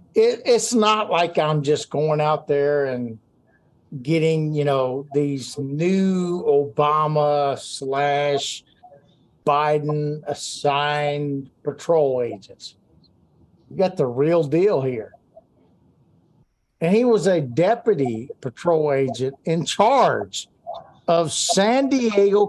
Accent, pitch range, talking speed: American, 140-185 Hz, 105 wpm